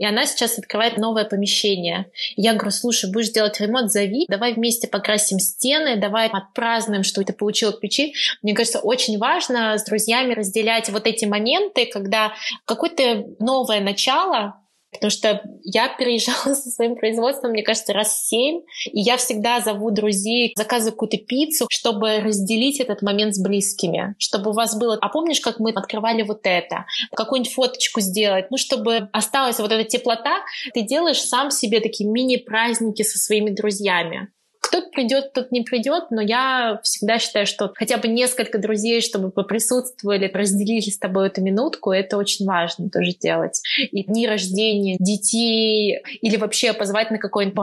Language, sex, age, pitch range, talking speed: Russian, female, 20-39, 205-235 Hz, 165 wpm